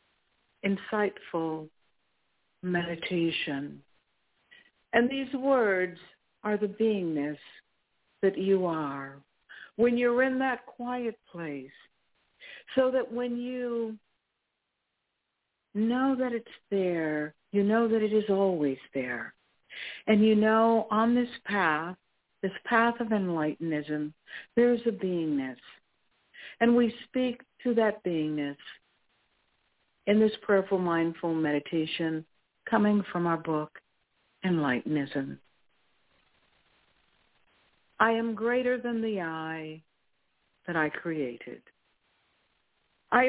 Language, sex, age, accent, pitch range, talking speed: English, female, 60-79, American, 160-235 Hz, 100 wpm